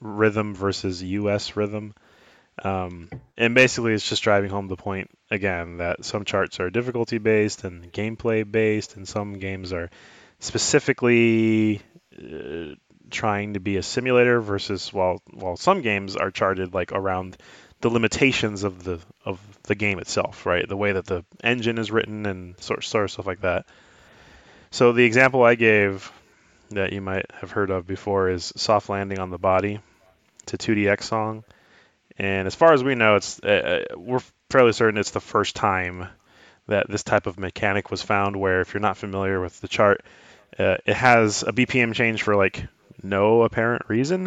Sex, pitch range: male, 95-120 Hz